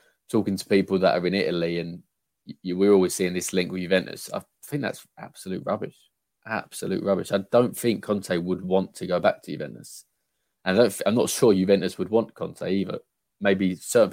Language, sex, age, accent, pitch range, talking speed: English, male, 20-39, British, 90-100 Hz, 185 wpm